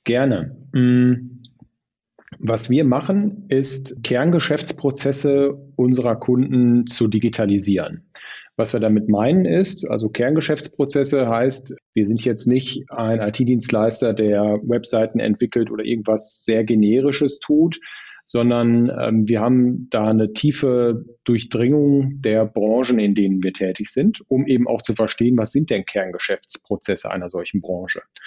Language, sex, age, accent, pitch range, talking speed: German, male, 40-59, German, 110-135 Hz, 125 wpm